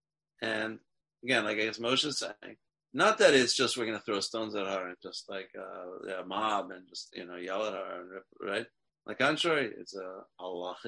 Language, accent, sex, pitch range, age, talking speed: English, American, male, 100-115 Hz, 30-49, 230 wpm